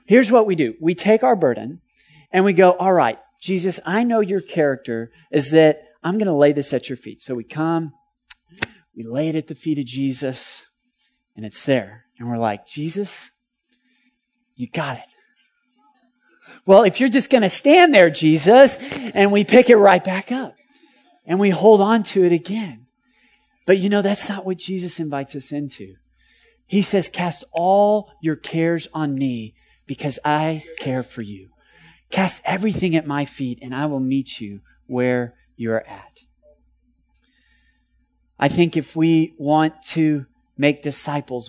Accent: American